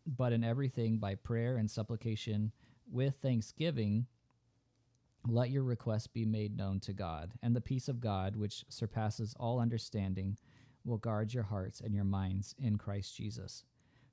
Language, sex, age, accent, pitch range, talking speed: English, male, 40-59, American, 105-125 Hz, 155 wpm